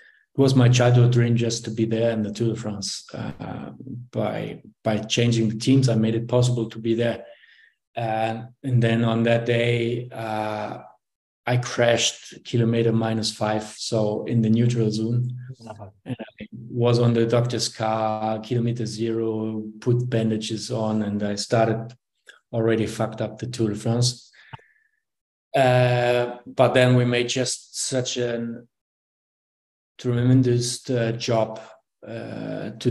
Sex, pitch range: male, 110-125 Hz